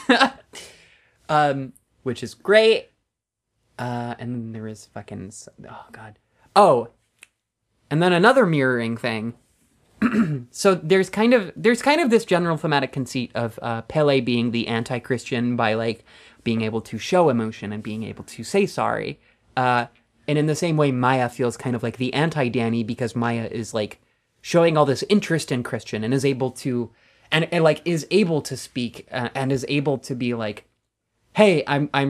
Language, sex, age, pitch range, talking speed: English, male, 20-39, 115-150 Hz, 170 wpm